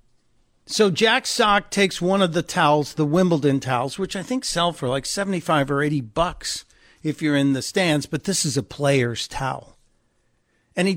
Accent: American